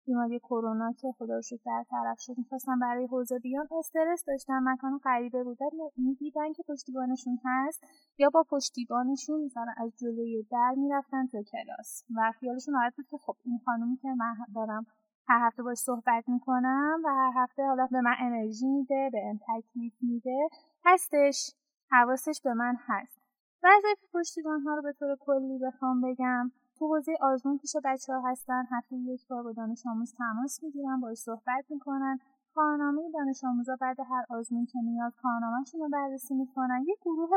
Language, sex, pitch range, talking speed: Persian, female, 245-285 Hz, 165 wpm